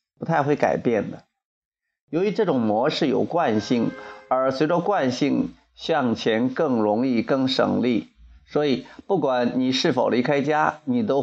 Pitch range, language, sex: 125-175 Hz, Chinese, male